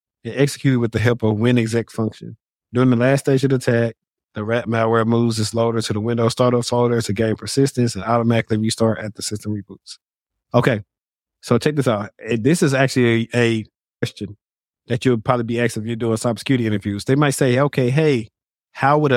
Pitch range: 110-130 Hz